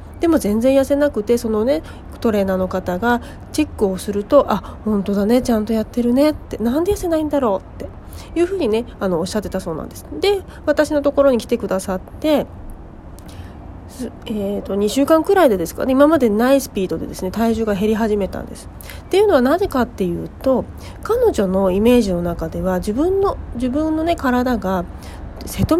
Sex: female